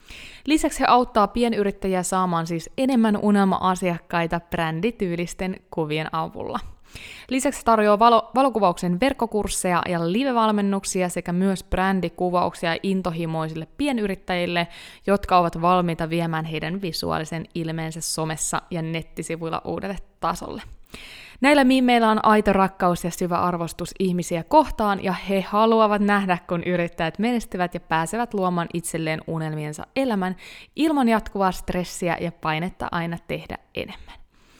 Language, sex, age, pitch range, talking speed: Finnish, female, 20-39, 175-225 Hz, 115 wpm